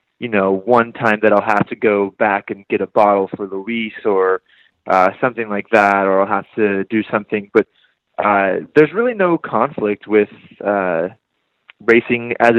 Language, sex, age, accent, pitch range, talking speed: English, male, 20-39, American, 100-115 Hz, 175 wpm